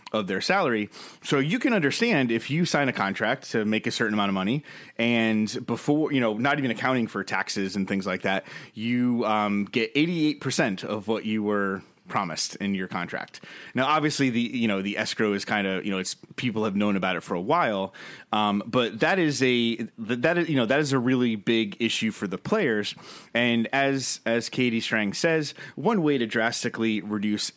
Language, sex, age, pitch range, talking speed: English, male, 30-49, 105-135 Hz, 205 wpm